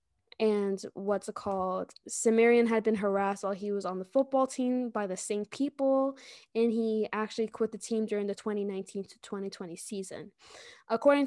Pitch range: 195-225 Hz